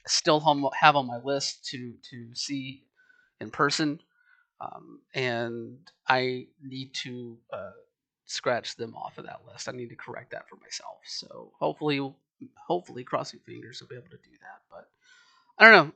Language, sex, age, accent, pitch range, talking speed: English, male, 30-49, American, 125-170 Hz, 165 wpm